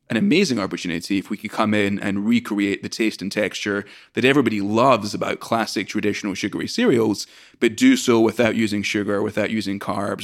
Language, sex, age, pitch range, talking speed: English, male, 30-49, 105-120 Hz, 180 wpm